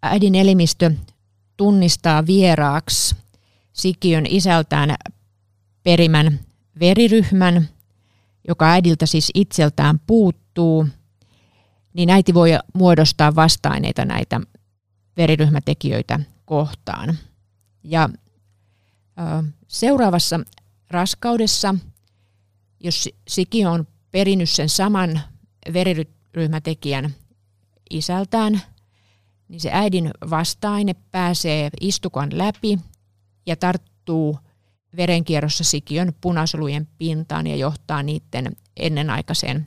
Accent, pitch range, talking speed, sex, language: native, 105-175 Hz, 75 wpm, female, Finnish